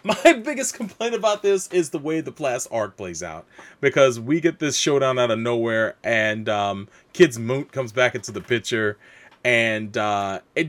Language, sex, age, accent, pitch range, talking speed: English, male, 30-49, American, 105-155 Hz, 185 wpm